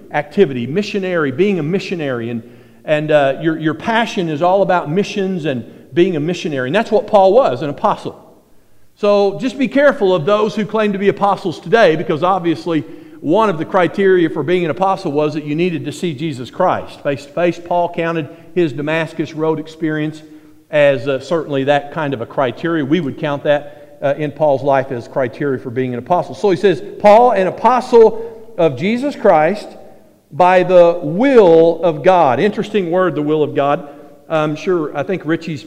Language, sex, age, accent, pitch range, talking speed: English, male, 50-69, American, 150-195 Hz, 185 wpm